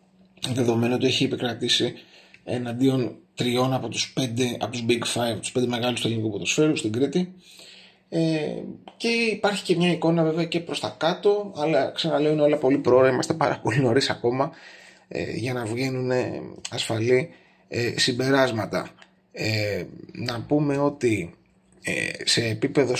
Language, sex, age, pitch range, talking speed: Greek, male, 30-49, 115-160 Hz, 150 wpm